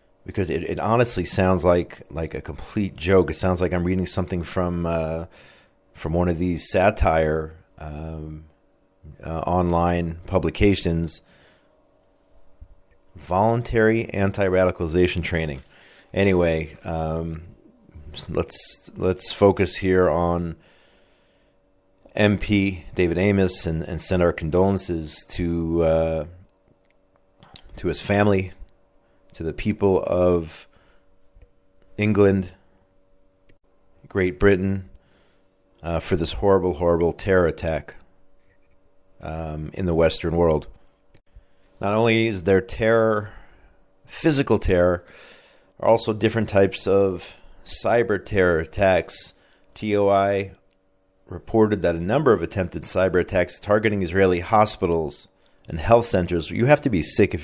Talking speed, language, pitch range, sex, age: 110 wpm, English, 85-95 Hz, male, 40-59